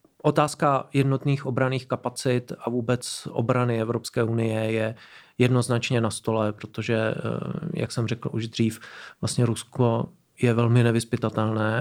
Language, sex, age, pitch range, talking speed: Czech, male, 40-59, 110-125 Hz, 120 wpm